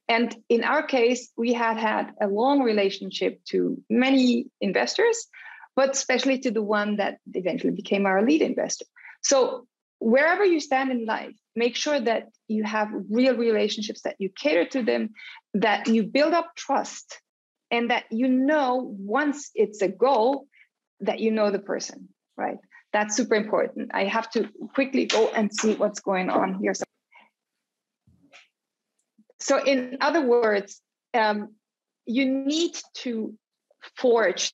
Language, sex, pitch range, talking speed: English, female, 210-270 Hz, 145 wpm